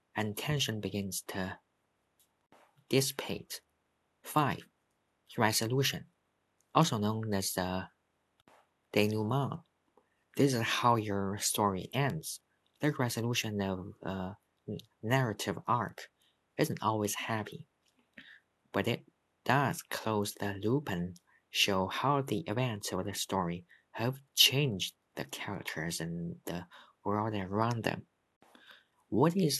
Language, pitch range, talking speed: English, 95-130 Hz, 105 wpm